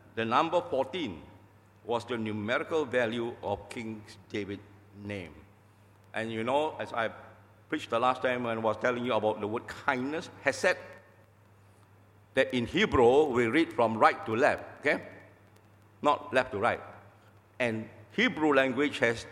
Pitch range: 100-130 Hz